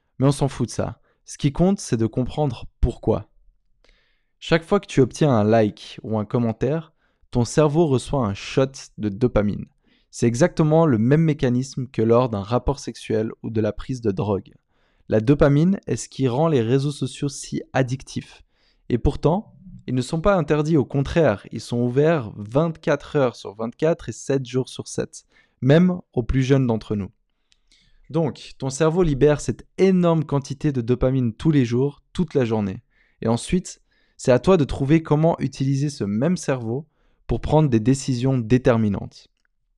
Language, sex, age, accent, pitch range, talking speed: French, male, 20-39, French, 120-155 Hz, 175 wpm